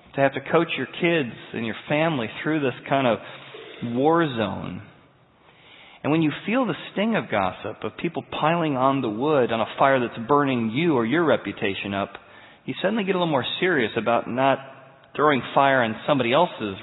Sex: male